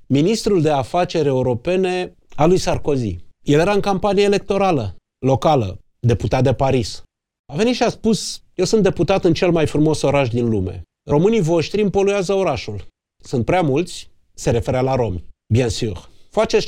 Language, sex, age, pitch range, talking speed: Romanian, male, 30-49, 125-190 Hz, 160 wpm